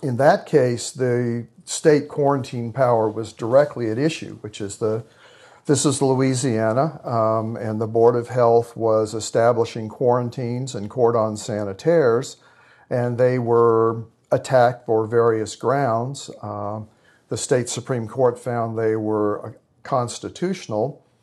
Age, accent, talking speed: 50-69, American, 125 wpm